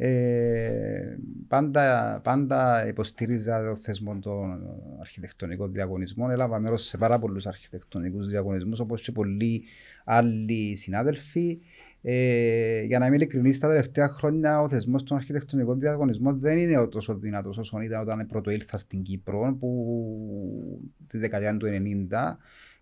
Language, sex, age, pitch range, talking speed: Greek, male, 30-49, 105-145 Hz, 120 wpm